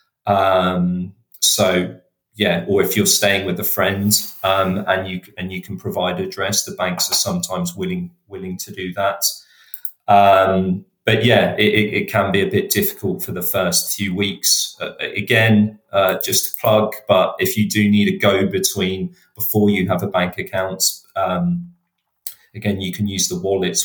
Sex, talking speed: male, 175 wpm